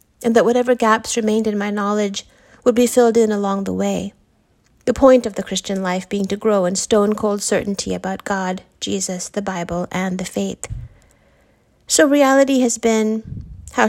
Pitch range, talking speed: 195-230 Hz, 175 wpm